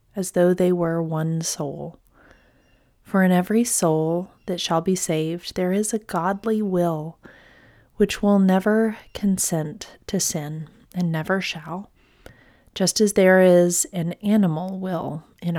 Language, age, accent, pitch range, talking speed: English, 30-49, American, 165-195 Hz, 140 wpm